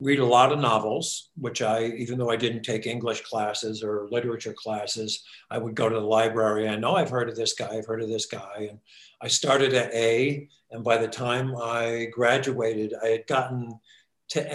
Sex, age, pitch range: male, 60-79, 110-130 Hz